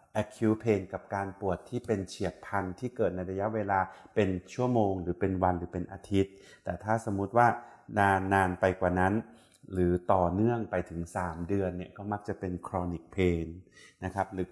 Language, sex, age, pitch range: Thai, male, 30-49, 90-110 Hz